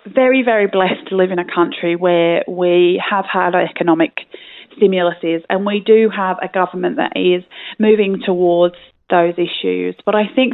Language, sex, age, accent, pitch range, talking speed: English, female, 30-49, British, 180-205 Hz, 165 wpm